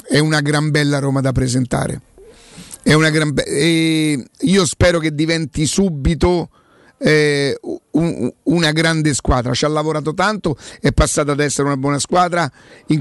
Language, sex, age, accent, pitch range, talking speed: Italian, male, 50-69, native, 150-175 Hz, 145 wpm